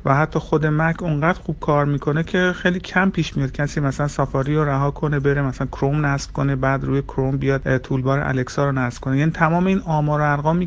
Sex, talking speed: male, 215 wpm